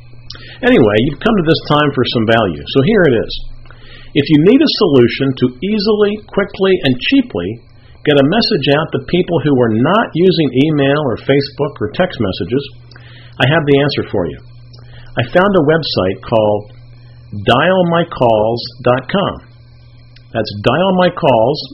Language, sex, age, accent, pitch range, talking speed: English, male, 50-69, American, 120-165 Hz, 145 wpm